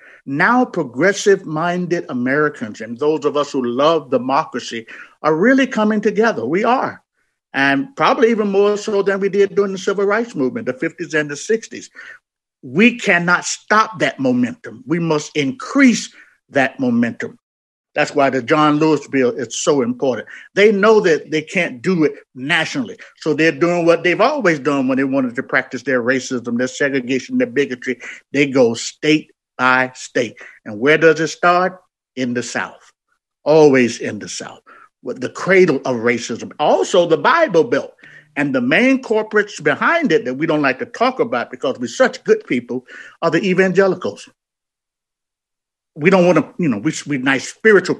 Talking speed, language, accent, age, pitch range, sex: 170 wpm, English, American, 50-69, 135-210 Hz, male